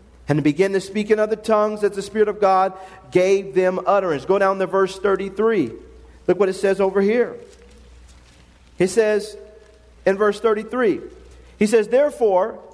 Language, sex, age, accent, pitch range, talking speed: English, male, 40-59, American, 190-240 Hz, 160 wpm